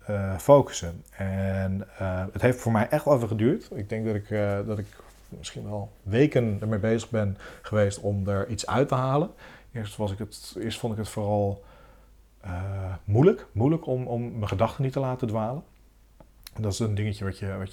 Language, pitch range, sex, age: Dutch, 95-110 Hz, male, 40-59